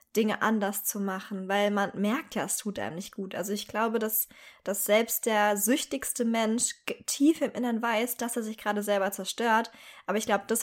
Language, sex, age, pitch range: German, female, 20-39, 200-230 Hz